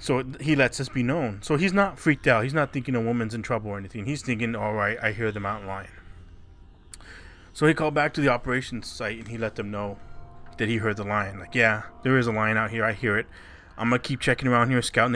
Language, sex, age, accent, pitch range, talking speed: English, male, 20-39, American, 95-125 Hz, 260 wpm